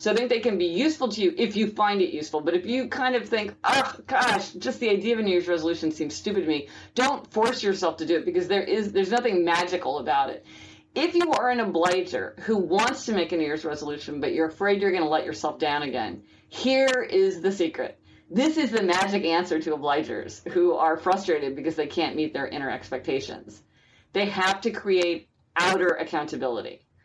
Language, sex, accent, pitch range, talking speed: English, female, American, 155-205 Hz, 215 wpm